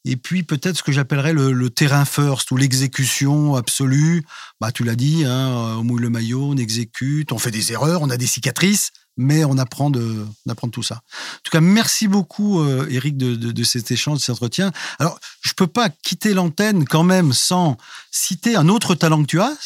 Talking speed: 220 wpm